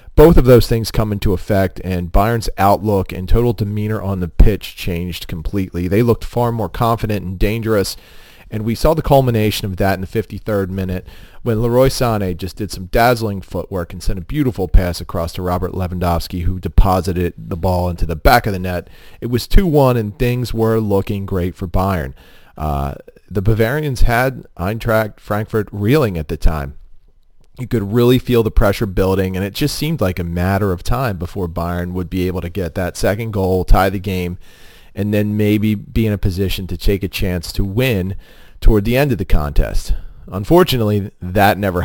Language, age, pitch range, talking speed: English, 40-59, 90-115 Hz, 190 wpm